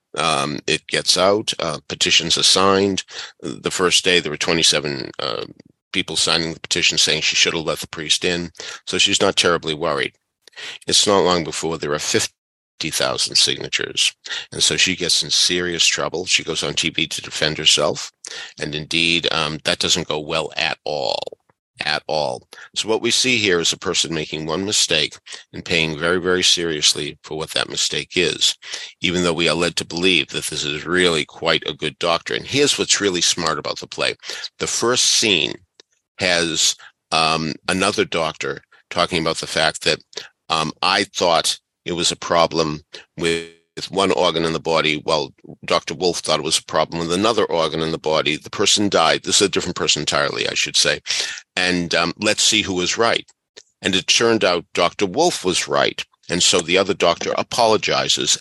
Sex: male